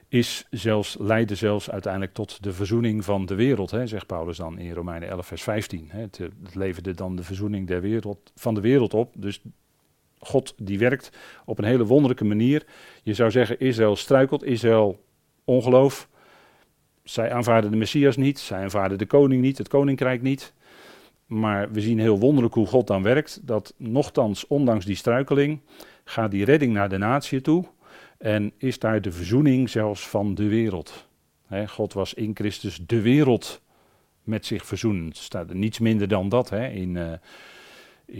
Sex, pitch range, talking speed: male, 100-120 Hz, 165 wpm